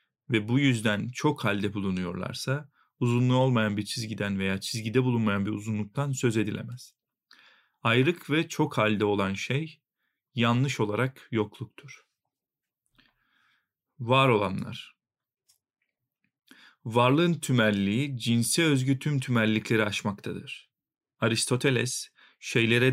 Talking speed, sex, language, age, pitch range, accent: 95 wpm, male, Turkish, 40-59, 105-130 Hz, native